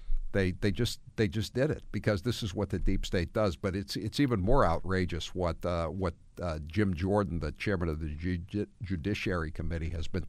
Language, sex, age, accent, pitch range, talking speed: English, male, 60-79, American, 90-115 Hz, 205 wpm